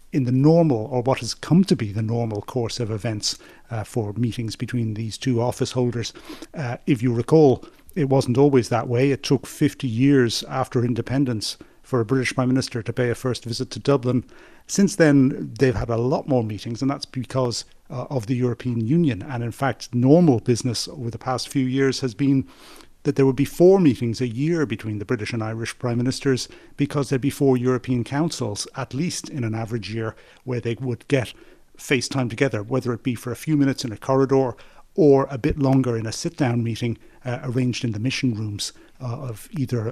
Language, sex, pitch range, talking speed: English, male, 115-135 Hz, 205 wpm